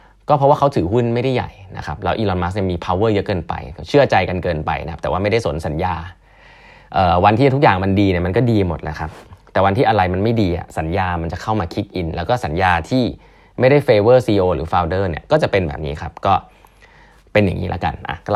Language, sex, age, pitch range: Thai, male, 20-39, 90-115 Hz